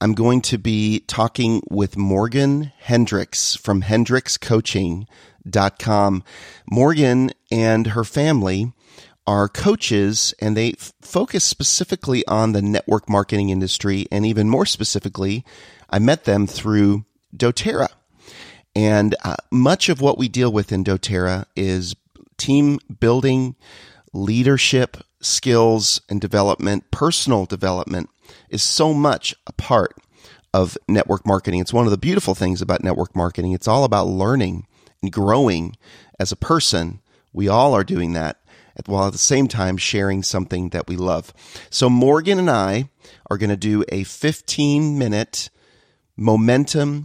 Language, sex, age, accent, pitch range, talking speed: English, male, 40-59, American, 95-130 Hz, 135 wpm